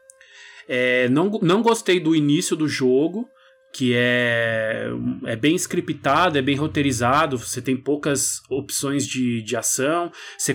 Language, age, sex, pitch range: Portuguese, 20-39, male, 125-155 Hz